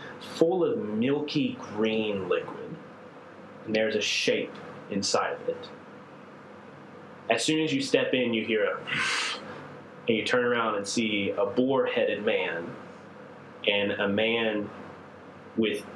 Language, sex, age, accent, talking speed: English, male, 30-49, American, 130 wpm